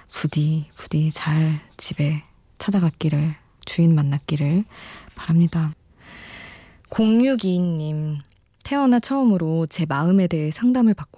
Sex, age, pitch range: female, 20-39, 155-200 Hz